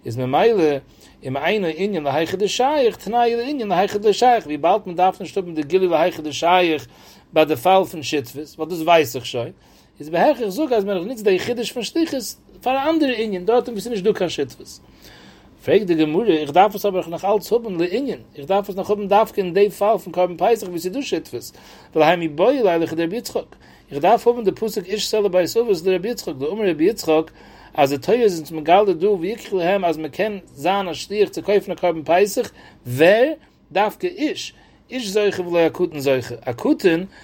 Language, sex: English, male